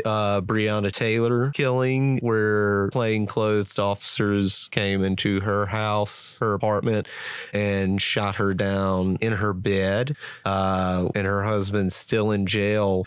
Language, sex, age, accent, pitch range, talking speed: English, male, 30-49, American, 95-110 Hz, 125 wpm